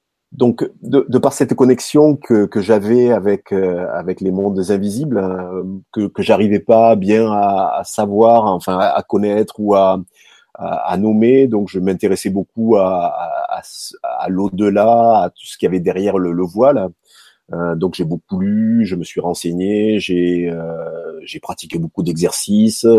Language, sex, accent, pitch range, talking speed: French, male, French, 95-130 Hz, 170 wpm